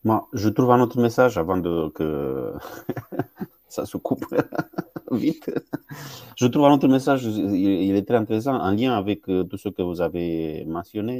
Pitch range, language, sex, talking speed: 95-130 Hz, French, male, 170 wpm